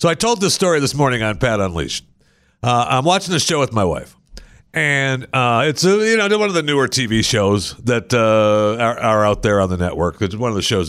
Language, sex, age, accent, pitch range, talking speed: English, male, 50-69, American, 125-170 Hz, 240 wpm